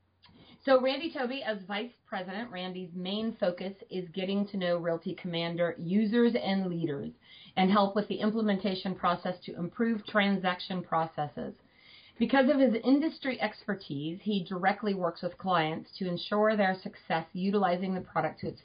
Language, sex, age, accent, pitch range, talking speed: English, female, 30-49, American, 170-210 Hz, 150 wpm